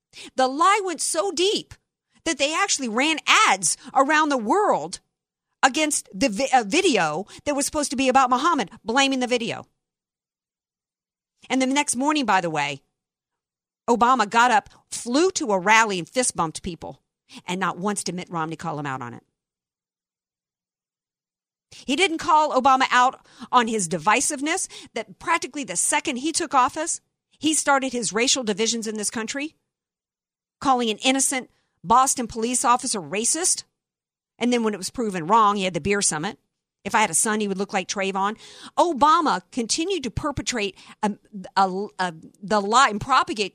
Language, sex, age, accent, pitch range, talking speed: English, female, 50-69, American, 200-295 Hz, 160 wpm